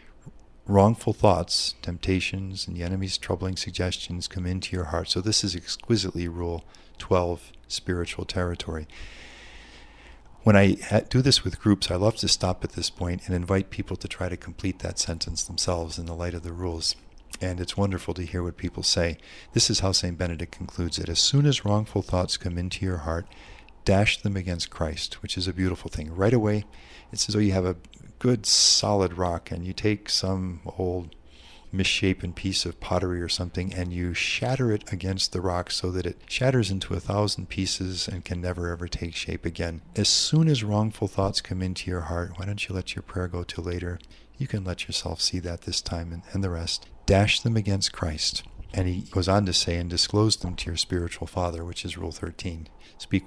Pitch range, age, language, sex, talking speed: 85-100 Hz, 50-69, English, male, 200 wpm